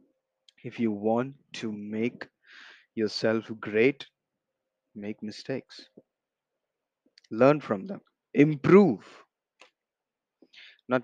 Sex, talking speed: male, 75 wpm